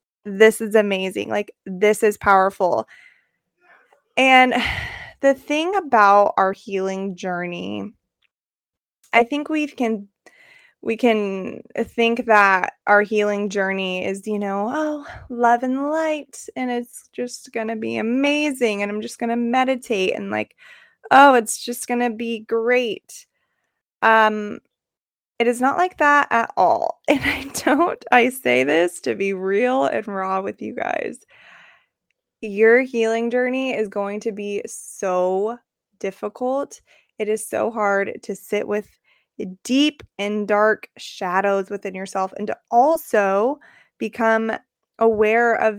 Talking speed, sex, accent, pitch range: 135 wpm, female, American, 200-250 Hz